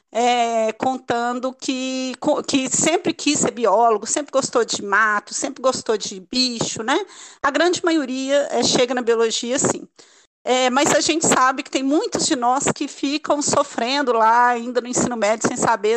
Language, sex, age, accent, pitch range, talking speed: Portuguese, female, 40-59, Brazilian, 240-290 Hz, 170 wpm